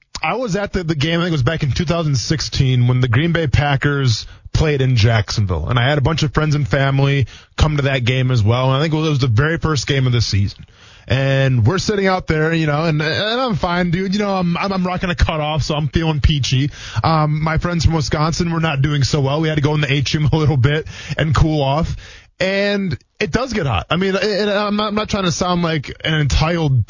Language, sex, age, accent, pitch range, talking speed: English, male, 20-39, American, 135-195 Hz, 250 wpm